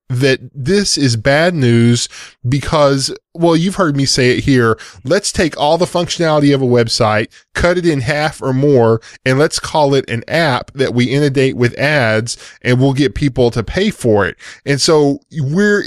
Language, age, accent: English, 10-29, American